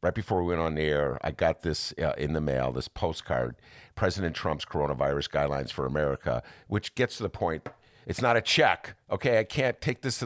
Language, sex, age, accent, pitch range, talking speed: English, male, 50-69, American, 90-115 Hz, 215 wpm